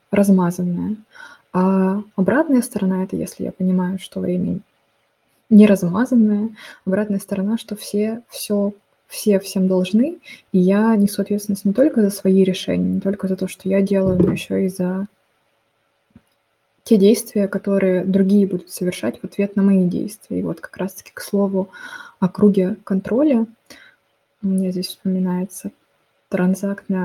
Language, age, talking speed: Russian, 20-39, 145 wpm